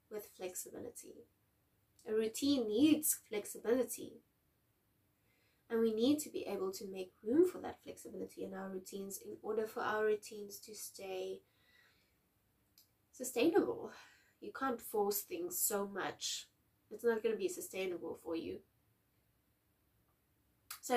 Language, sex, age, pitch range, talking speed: English, female, 20-39, 205-245 Hz, 125 wpm